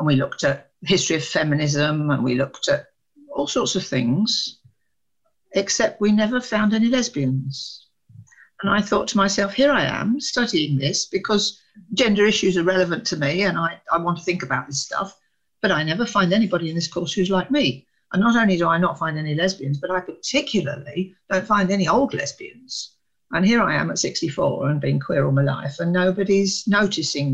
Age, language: 50-69, English